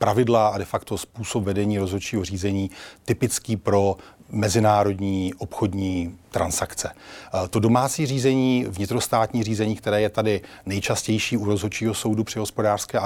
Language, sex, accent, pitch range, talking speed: Czech, male, native, 100-115 Hz, 130 wpm